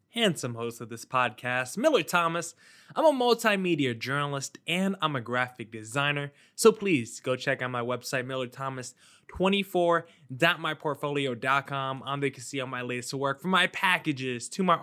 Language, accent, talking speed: English, American, 145 wpm